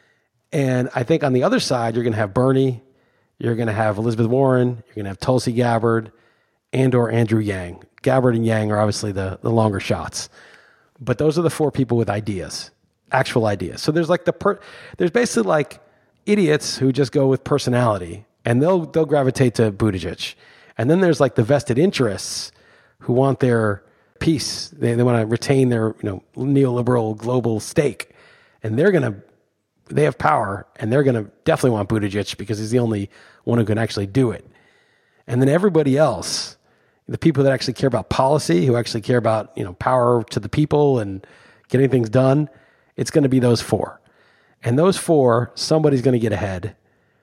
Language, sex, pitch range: English, male, 110-135 Hz